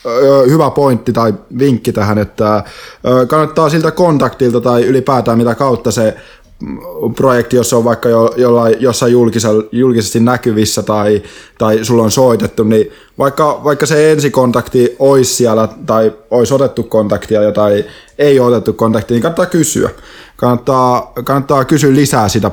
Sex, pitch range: male, 110-130 Hz